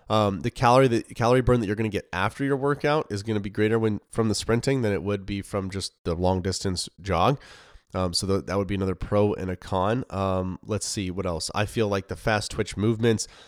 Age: 20-39